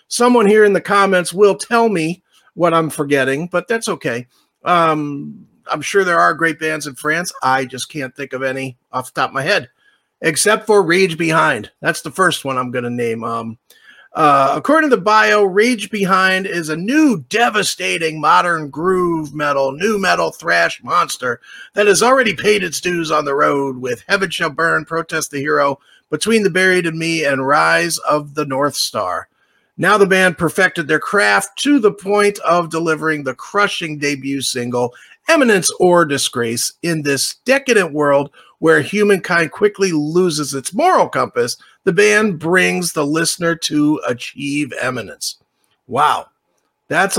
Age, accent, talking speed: 40-59, American, 165 wpm